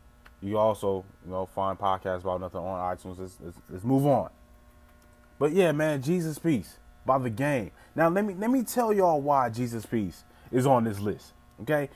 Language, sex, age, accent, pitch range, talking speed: English, male, 20-39, American, 85-130 Hz, 190 wpm